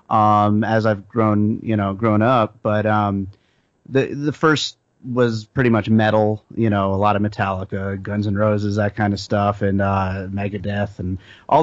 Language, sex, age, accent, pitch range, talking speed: English, male, 30-49, American, 105-120 Hz, 180 wpm